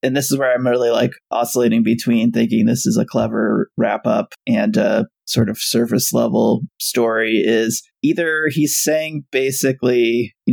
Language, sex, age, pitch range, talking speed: English, male, 20-39, 115-135 Hz, 165 wpm